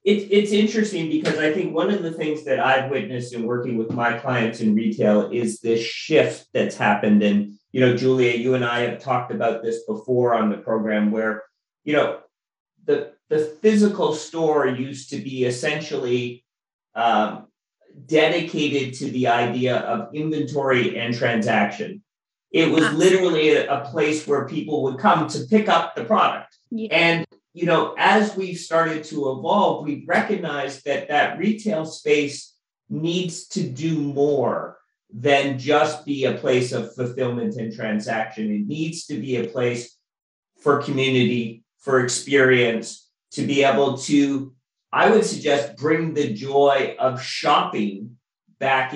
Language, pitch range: English, 120-160 Hz